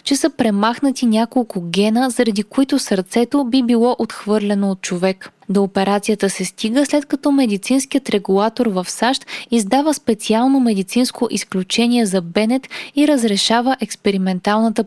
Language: Bulgarian